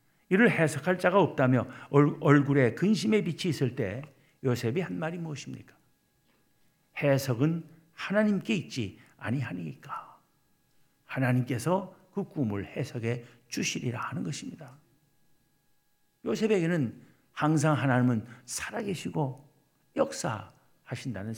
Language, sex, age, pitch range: Korean, male, 50-69, 125-180 Hz